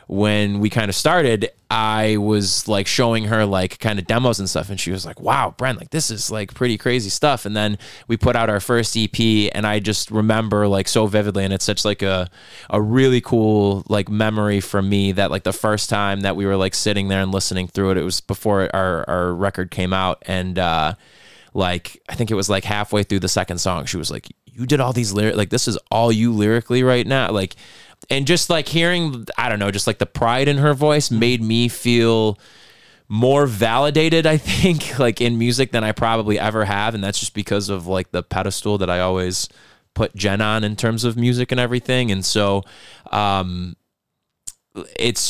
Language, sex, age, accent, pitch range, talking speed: English, male, 20-39, American, 100-115 Hz, 215 wpm